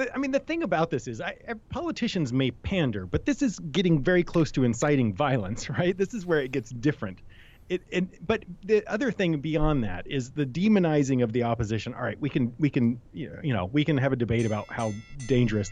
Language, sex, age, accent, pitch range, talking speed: English, male, 30-49, American, 120-165 Hz, 225 wpm